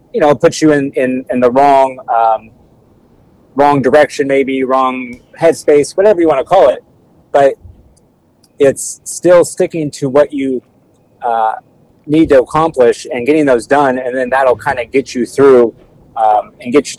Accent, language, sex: American, English, male